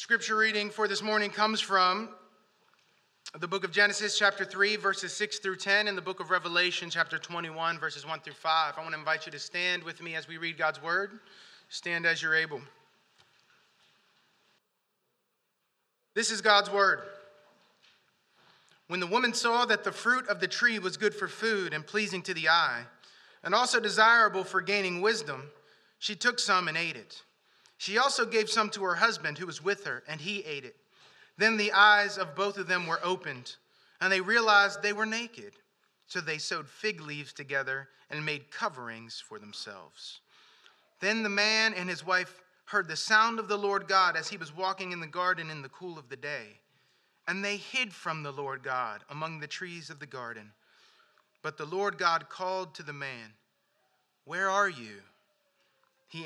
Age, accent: 30-49, American